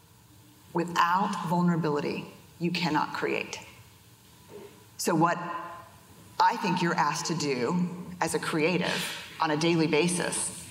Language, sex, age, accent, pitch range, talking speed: English, female, 40-59, American, 160-215 Hz, 110 wpm